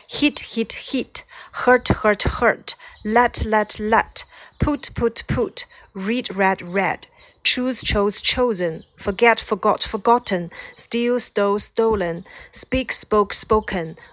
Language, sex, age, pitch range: Chinese, female, 30-49, 200-240 Hz